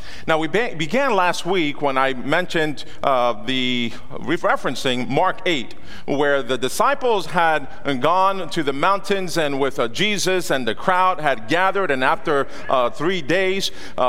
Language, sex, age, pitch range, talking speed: English, male, 40-59, 140-200 Hz, 155 wpm